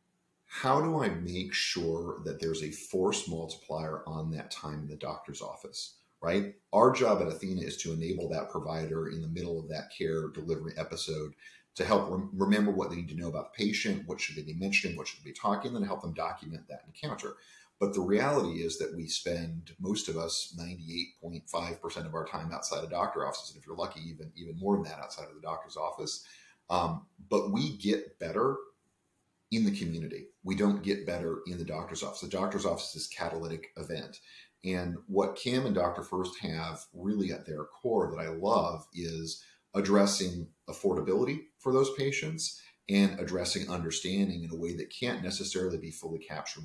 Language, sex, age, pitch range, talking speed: English, male, 40-59, 80-95 Hz, 190 wpm